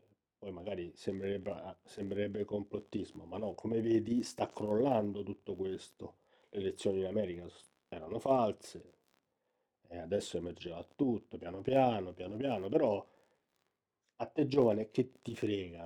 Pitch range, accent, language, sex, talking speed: 100-130 Hz, native, Italian, male, 130 wpm